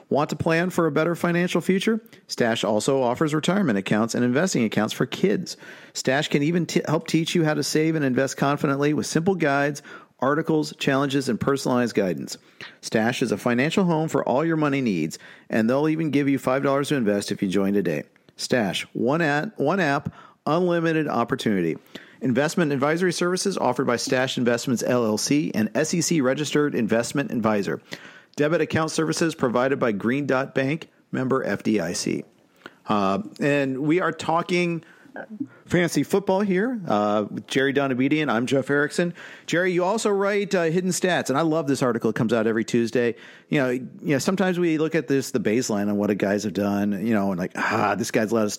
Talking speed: 180 wpm